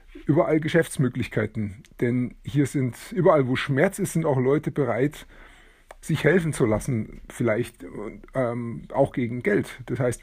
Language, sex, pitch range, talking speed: German, male, 125-155 Hz, 140 wpm